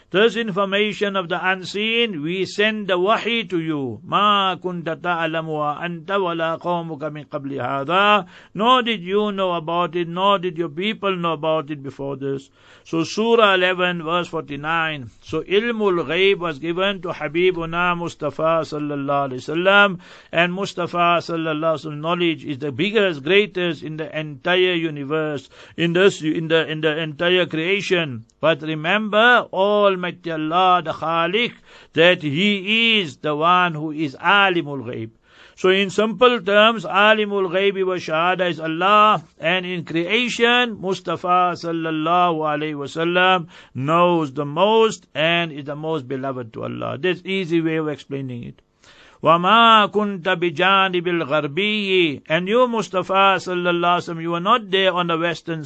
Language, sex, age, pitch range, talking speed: English, male, 60-79, 160-190 Hz, 135 wpm